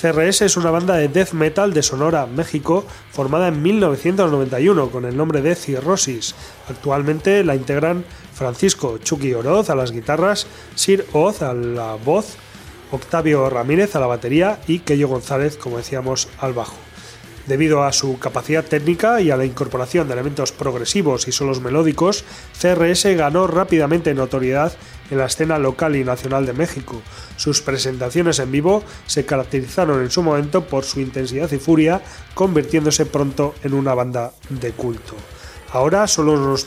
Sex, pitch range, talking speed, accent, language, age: male, 130-170 Hz, 155 wpm, Spanish, Spanish, 30-49